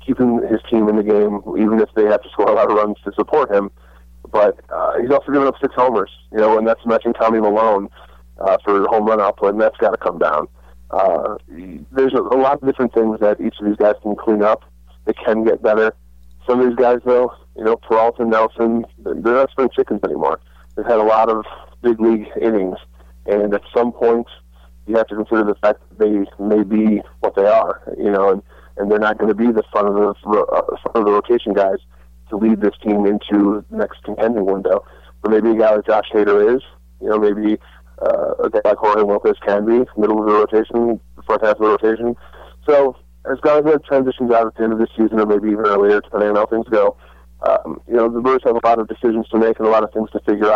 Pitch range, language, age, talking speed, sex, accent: 100-115 Hz, English, 30-49, 235 wpm, male, American